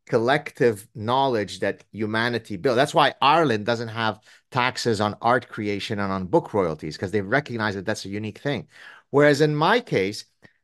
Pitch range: 120-170 Hz